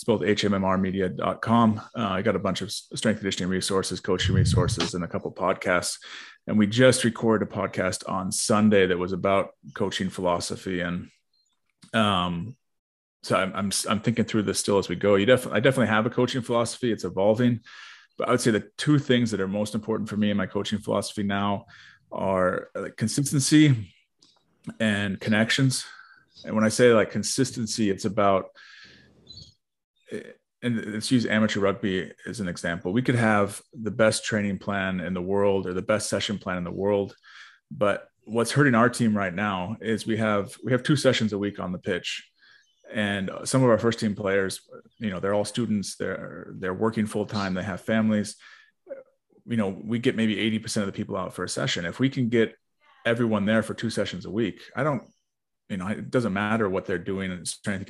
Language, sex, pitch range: English, male, 95-115 Hz